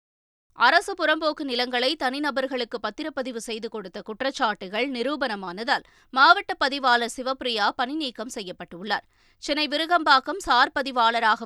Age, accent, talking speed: 20-39, native, 95 wpm